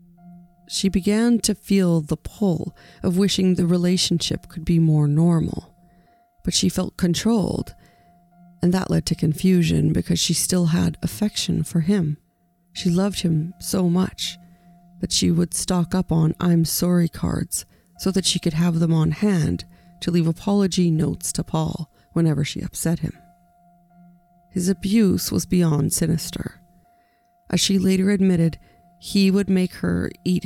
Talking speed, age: 150 wpm, 40-59